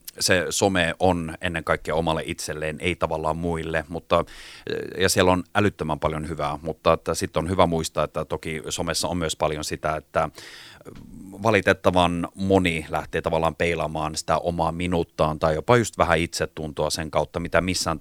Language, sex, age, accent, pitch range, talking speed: Finnish, male, 30-49, native, 80-85 Hz, 155 wpm